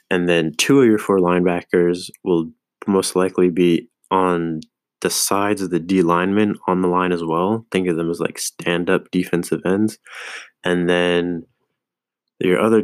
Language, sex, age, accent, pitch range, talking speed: English, male, 20-39, American, 85-95 Hz, 165 wpm